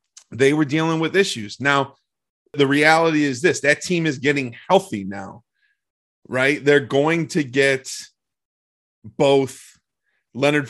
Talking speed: 130 wpm